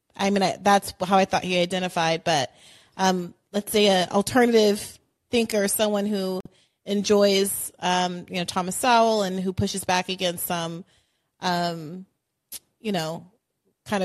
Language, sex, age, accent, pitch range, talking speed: English, female, 30-49, American, 180-225 Hz, 140 wpm